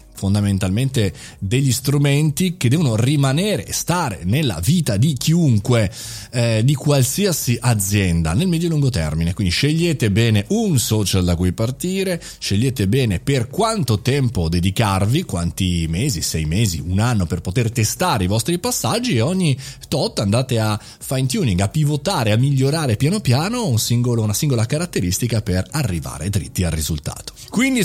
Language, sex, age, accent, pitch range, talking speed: Italian, male, 30-49, native, 110-170 Hz, 155 wpm